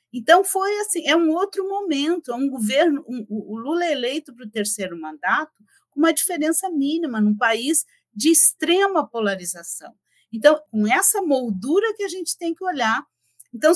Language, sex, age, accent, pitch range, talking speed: Portuguese, female, 50-69, Brazilian, 210-305 Hz, 170 wpm